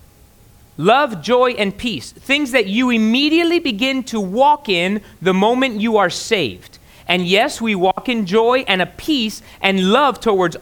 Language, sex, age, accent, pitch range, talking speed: English, male, 30-49, American, 170-255 Hz, 165 wpm